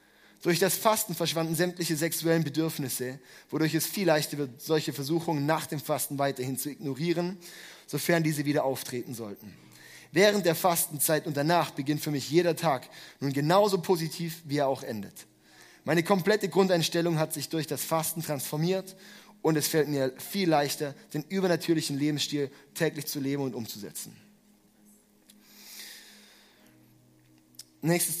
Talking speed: 140 wpm